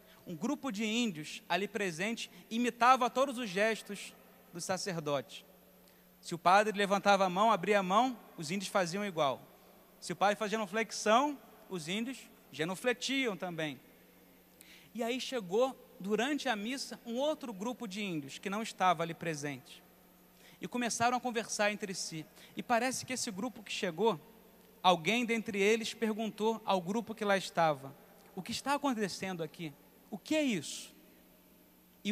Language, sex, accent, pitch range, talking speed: Portuguese, male, Brazilian, 180-250 Hz, 155 wpm